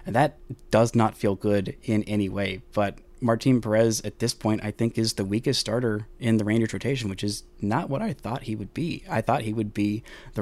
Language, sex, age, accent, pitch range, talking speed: English, male, 20-39, American, 105-120 Hz, 230 wpm